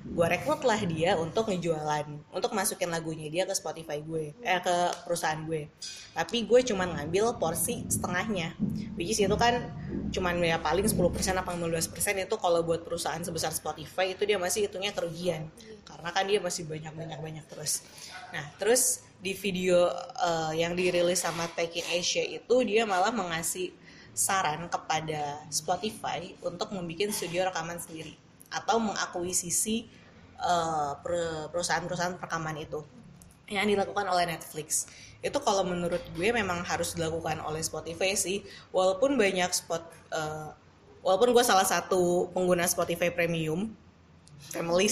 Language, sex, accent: Indonesian, female, native